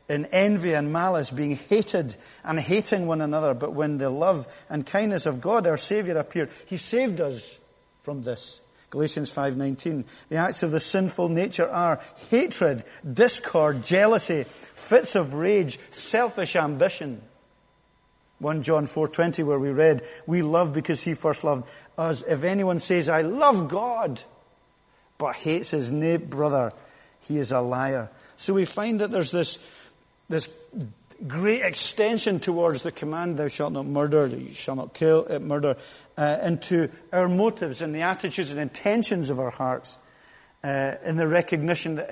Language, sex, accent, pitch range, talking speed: English, male, British, 140-180 Hz, 155 wpm